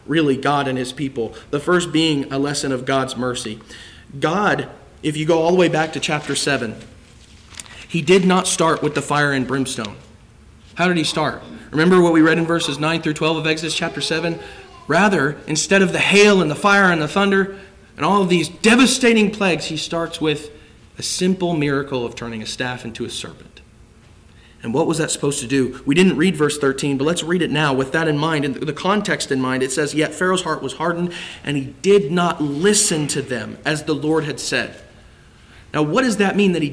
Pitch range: 135-180 Hz